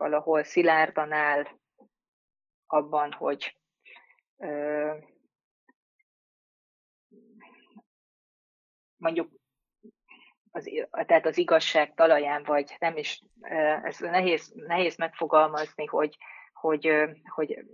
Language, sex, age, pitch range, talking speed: Hungarian, female, 30-49, 150-175 Hz, 75 wpm